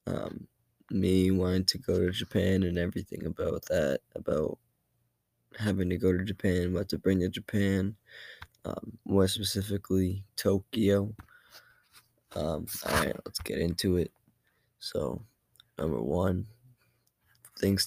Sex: male